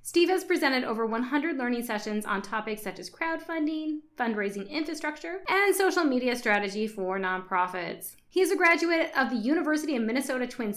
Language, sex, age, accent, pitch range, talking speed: English, female, 20-39, American, 205-285 Hz, 165 wpm